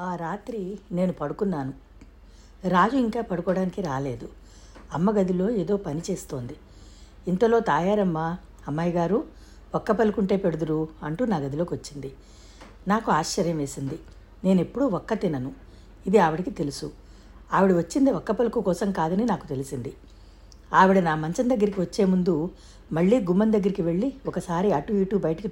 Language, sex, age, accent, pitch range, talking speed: Telugu, female, 60-79, native, 150-205 Hz, 130 wpm